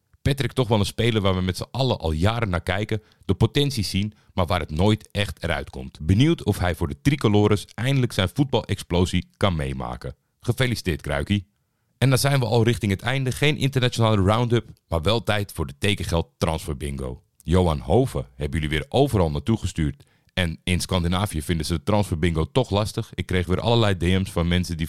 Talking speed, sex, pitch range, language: 195 wpm, male, 85-110 Hz, Dutch